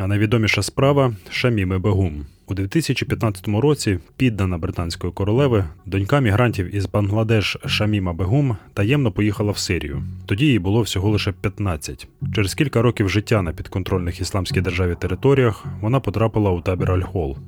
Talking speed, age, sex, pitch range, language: 145 wpm, 30-49, male, 95-115 Hz, Ukrainian